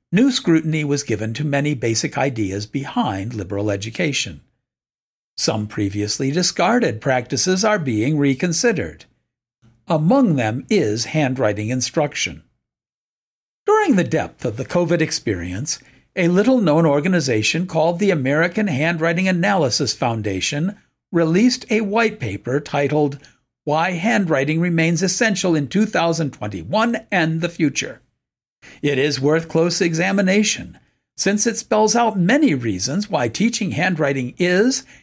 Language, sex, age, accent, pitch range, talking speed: English, male, 50-69, American, 135-190 Hz, 115 wpm